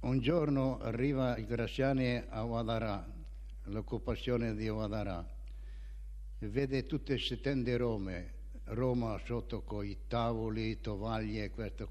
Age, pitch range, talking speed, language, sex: 60-79, 100-135 Hz, 130 wpm, Italian, male